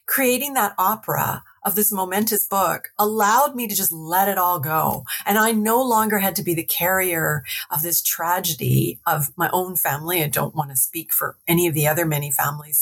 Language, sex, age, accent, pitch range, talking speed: English, female, 40-59, American, 165-225 Hz, 200 wpm